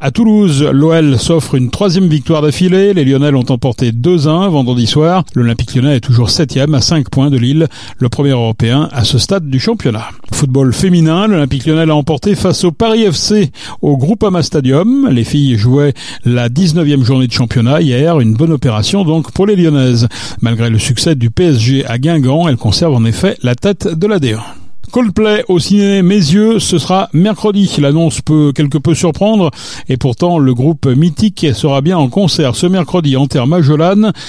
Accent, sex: French, male